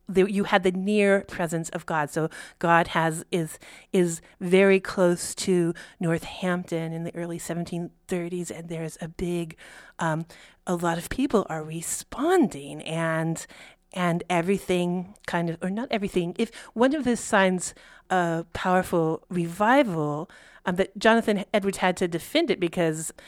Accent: American